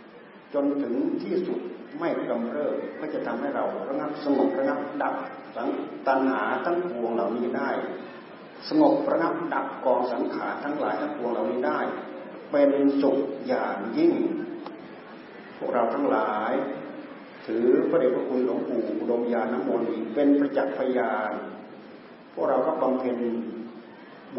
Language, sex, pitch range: Thai, male, 115-150 Hz